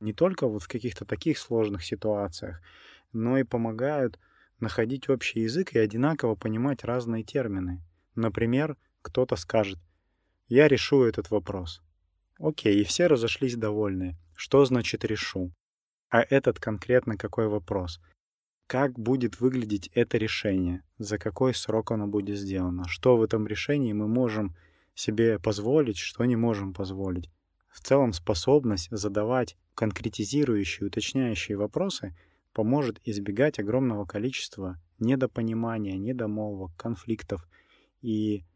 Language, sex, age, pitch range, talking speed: Russian, male, 20-39, 95-120 Hz, 120 wpm